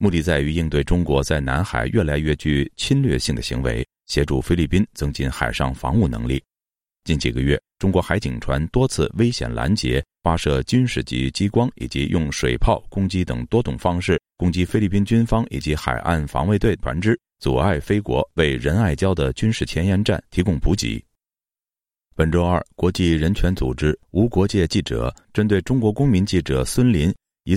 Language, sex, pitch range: Chinese, male, 70-100 Hz